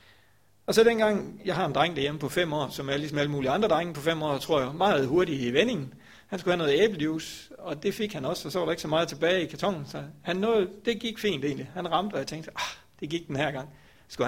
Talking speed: 280 wpm